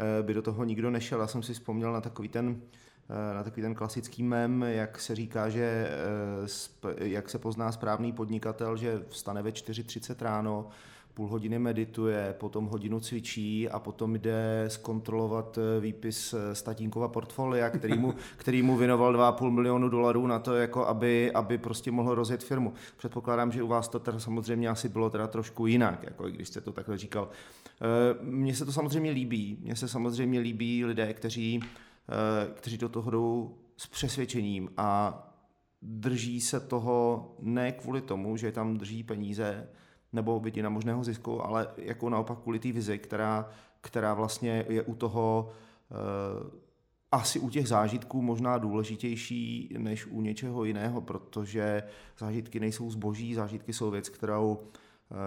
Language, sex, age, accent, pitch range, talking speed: Czech, male, 30-49, native, 110-120 Hz, 155 wpm